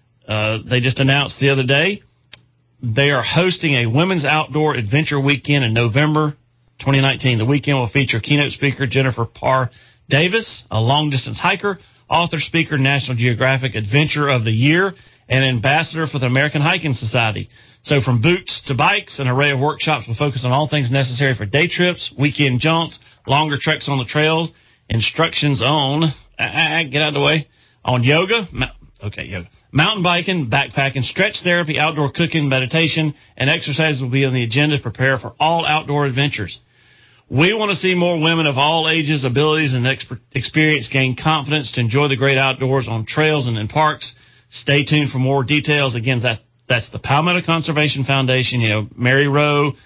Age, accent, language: 40-59, American, English